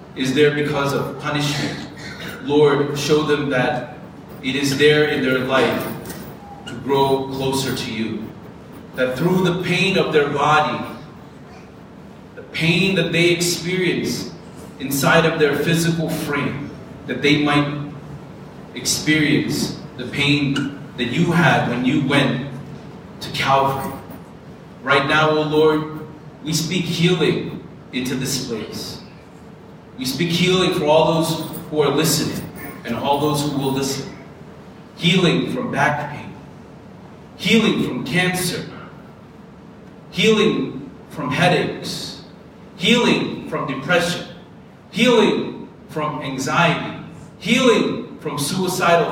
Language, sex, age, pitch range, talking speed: English, male, 30-49, 140-175 Hz, 115 wpm